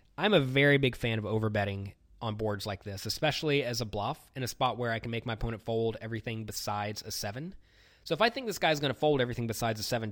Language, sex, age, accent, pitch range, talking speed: English, male, 20-39, American, 105-135 Hz, 250 wpm